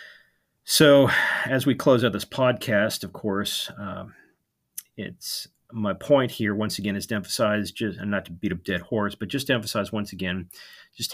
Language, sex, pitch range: English, male, 95-110 Hz